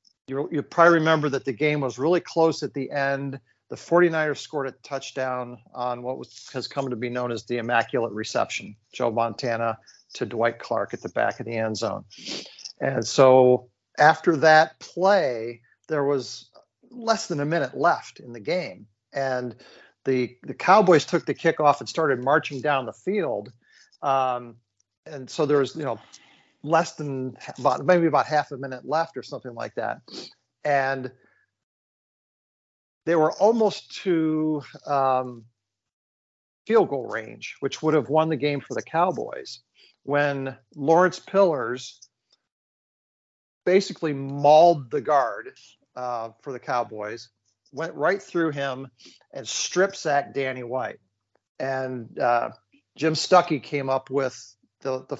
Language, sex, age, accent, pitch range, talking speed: English, male, 40-59, American, 125-155 Hz, 150 wpm